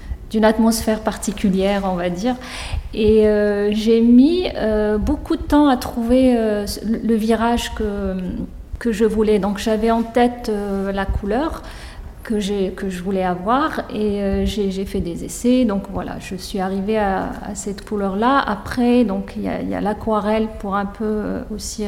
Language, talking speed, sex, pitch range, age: French, 175 wpm, female, 200-235 Hz, 40-59